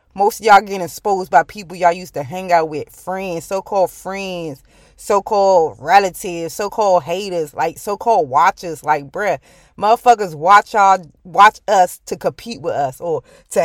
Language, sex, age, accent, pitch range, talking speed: English, female, 20-39, American, 195-250 Hz, 160 wpm